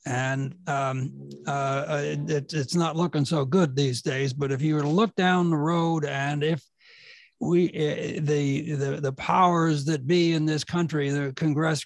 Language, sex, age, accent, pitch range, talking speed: English, male, 60-79, American, 150-175 Hz, 175 wpm